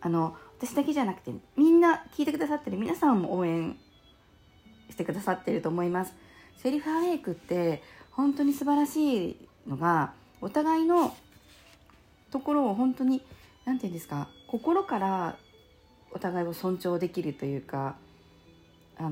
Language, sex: Japanese, female